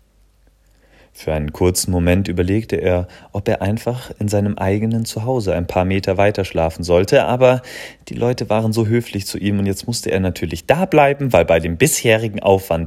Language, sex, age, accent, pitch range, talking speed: German, male, 30-49, German, 90-115 Hz, 180 wpm